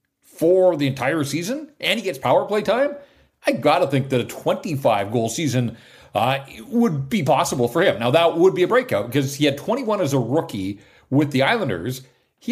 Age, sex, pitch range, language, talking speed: 40-59, male, 125-185 Hz, English, 195 wpm